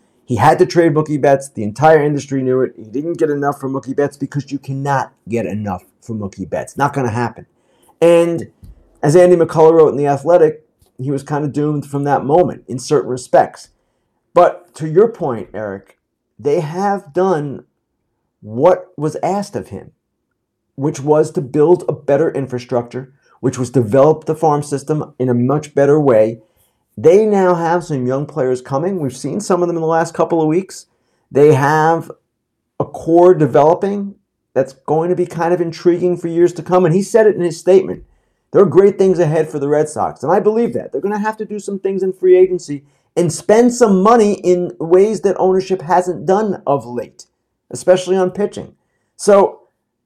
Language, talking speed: English, 190 wpm